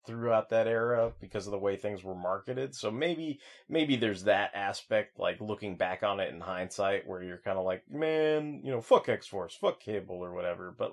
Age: 30-49